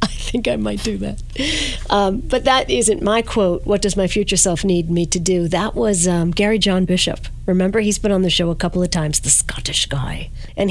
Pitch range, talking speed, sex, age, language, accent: 175-215 Hz, 225 wpm, female, 50-69, English, American